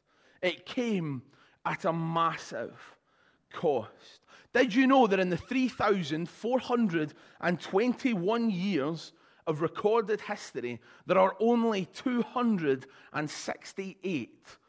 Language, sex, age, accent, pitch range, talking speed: English, male, 30-49, British, 170-225 Hz, 85 wpm